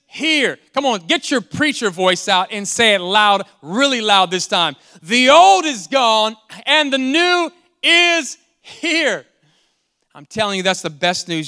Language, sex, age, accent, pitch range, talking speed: English, male, 30-49, American, 170-235 Hz, 165 wpm